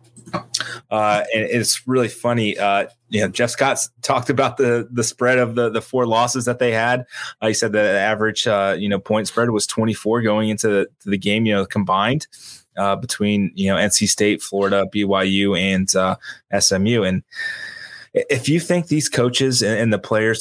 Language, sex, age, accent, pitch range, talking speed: English, male, 20-39, American, 100-115 Hz, 190 wpm